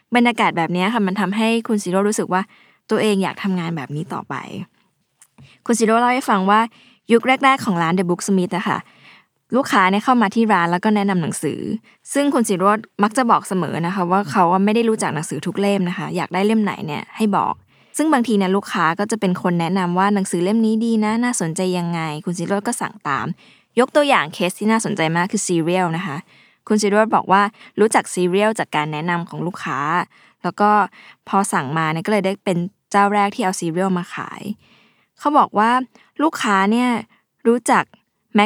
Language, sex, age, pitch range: Thai, female, 20-39, 180-225 Hz